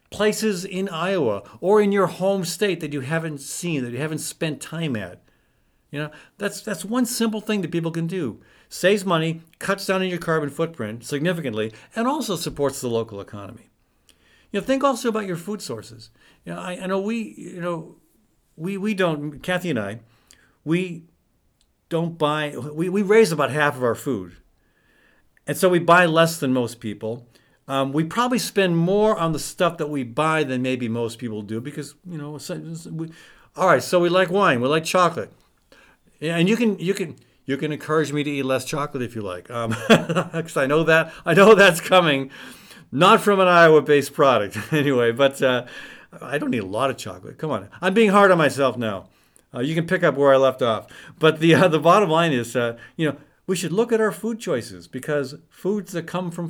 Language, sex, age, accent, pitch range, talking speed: English, male, 50-69, American, 135-185 Hz, 205 wpm